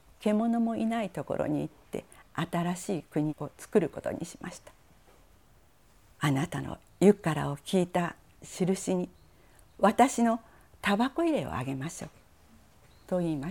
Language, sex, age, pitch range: Japanese, female, 50-69, 135-195 Hz